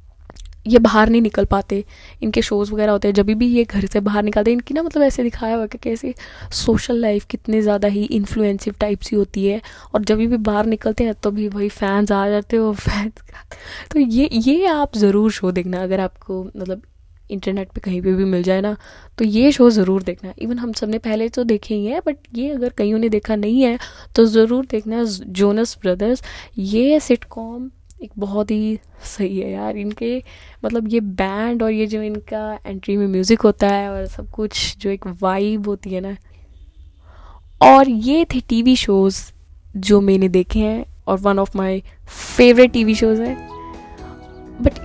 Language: Hindi